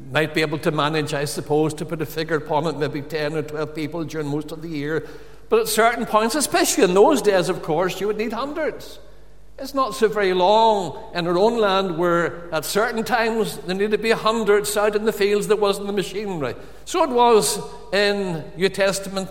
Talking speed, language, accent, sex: 215 wpm, English, Irish, male